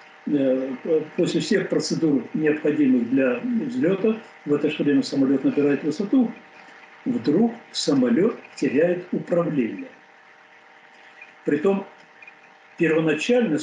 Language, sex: Russian, male